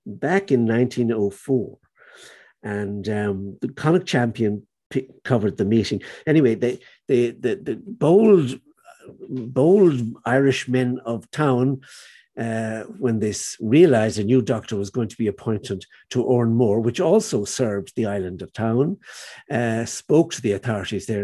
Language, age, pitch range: English, 60-79, 110-140 Hz